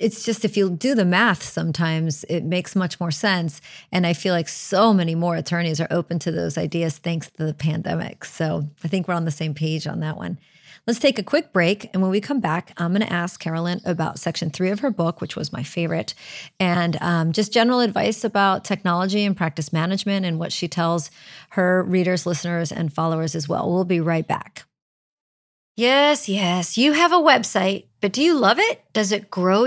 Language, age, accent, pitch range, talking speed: English, 30-49, American, 170-235 Hz, 210 wpm